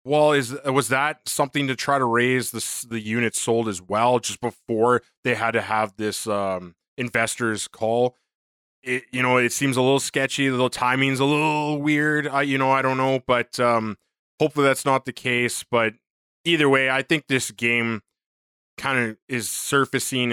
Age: 20-39